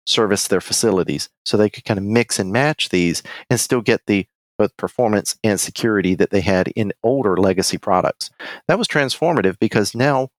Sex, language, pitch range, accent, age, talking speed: male, English, 100-115 Hz, American, 40-59, 185 wpm